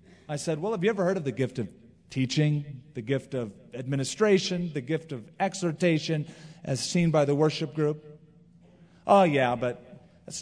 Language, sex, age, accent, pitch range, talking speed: English, male, 40-59, American, 135-195 Hz, 175 wpm